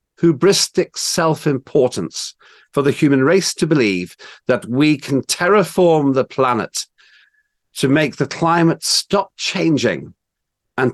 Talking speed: 115 wpm